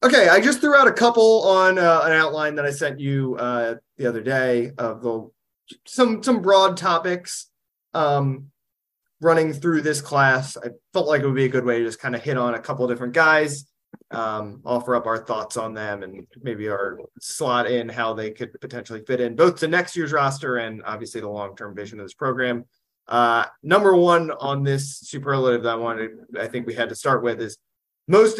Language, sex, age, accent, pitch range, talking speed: English, male, 20-39, American, 120-160 Hz, 210 wpm